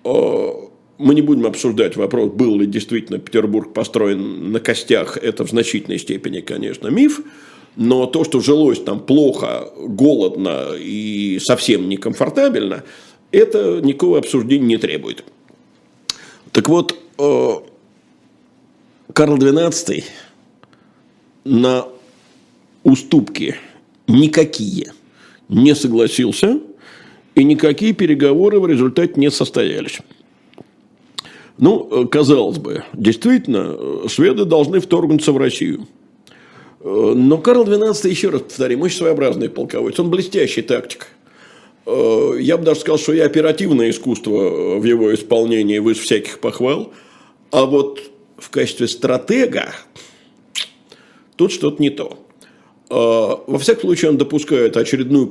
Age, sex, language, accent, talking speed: 50-69, male, Russian, native, 110 wpm